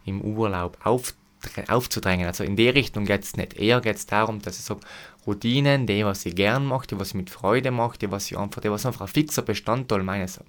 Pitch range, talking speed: 95-110 Hz, 235 wpm